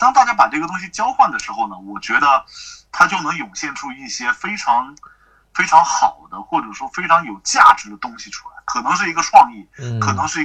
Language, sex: Chinese, male